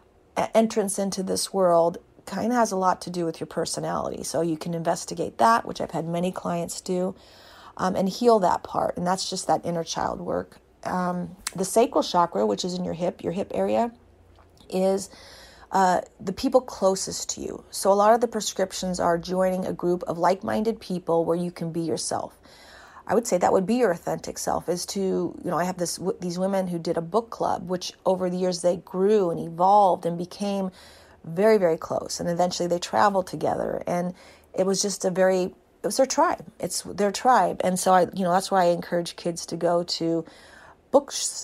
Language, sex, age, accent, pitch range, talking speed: English, female, 30-49, American, 170-195 Hz, 205 wpm